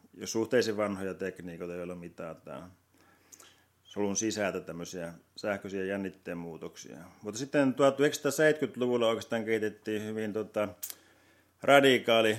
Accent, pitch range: native, 100-115 Hz